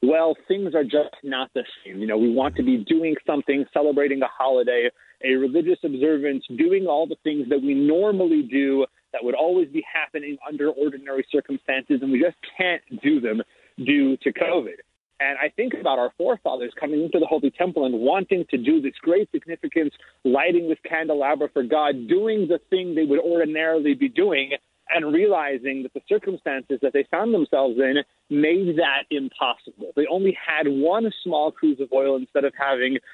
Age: 30-49